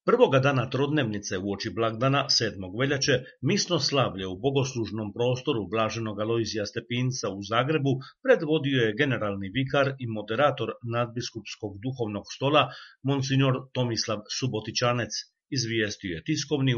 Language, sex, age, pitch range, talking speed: Croatian, male, 50-69, 110-140 Hz, 115 wpm